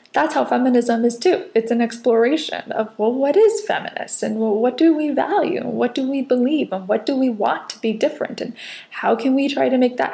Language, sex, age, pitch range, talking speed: English, female, 20-39, 220-280 Hz, 225 wpm